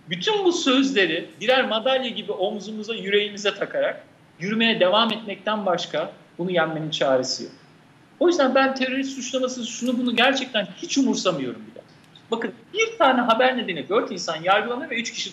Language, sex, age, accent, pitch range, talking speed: Turkish, male, 50-69, native, 180-270 Hz, 155 wpm